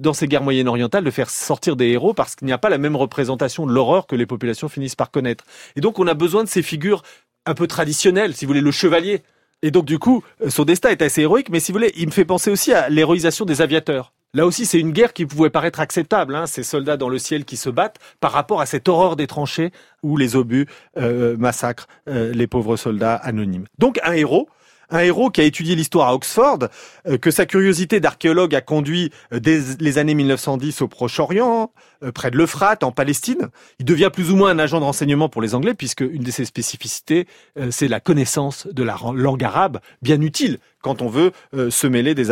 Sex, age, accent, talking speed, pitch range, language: male, 30-49, French, 225 wpm, 125-170 Hz, French